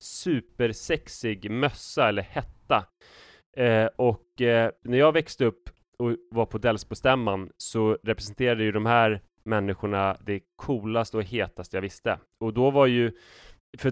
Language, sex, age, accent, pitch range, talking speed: Swedish, male, 20-39, native, 100-120 Hz, 130 wpm